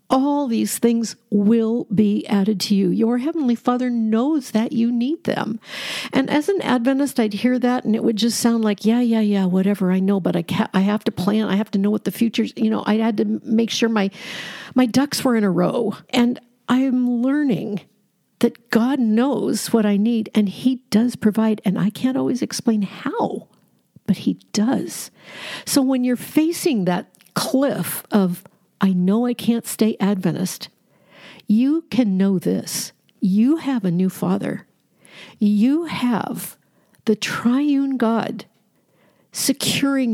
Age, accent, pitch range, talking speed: 50-69, American, 195-245 Hz, 175 wpm